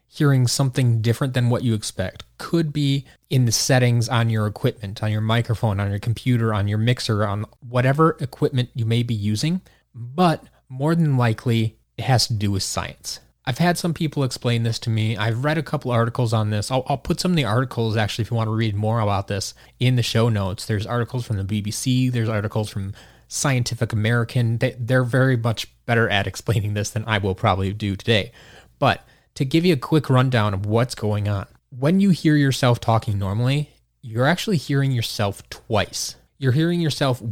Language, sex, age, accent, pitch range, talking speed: English, male, 20-39, American, 110-140 Hz, 200 wpm